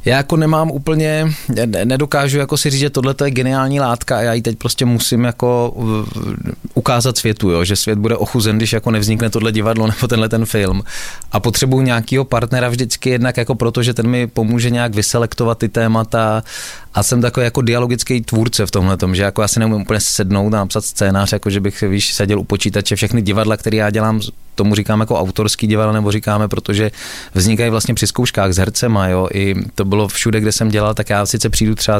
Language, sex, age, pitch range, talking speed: Slovak, male, 20-39, 105-120 Hz, 205 wpm